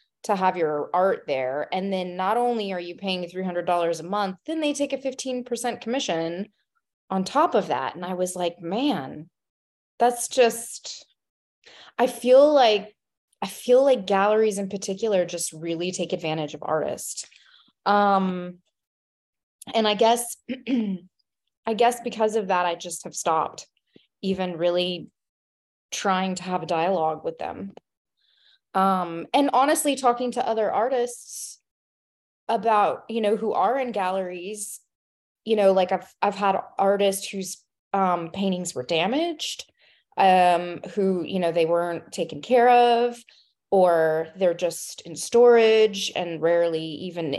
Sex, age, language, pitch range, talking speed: female, 20-39, English, 170-230 Hz, 145 wpm